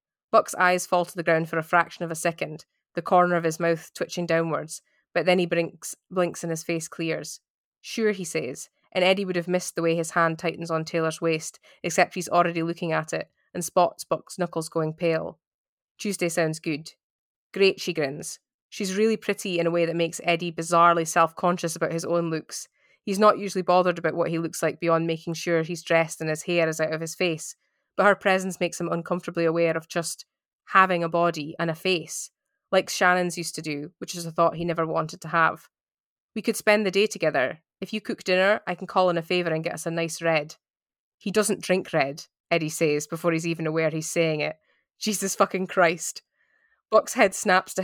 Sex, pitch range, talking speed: female, 165-185 Hz, 210 wpm